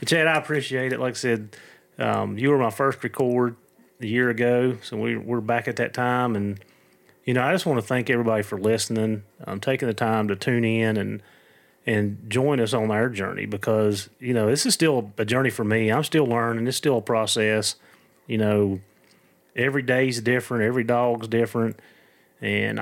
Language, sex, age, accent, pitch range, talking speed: English, male, 30-49, American, 105-125 Hz, 195 wpm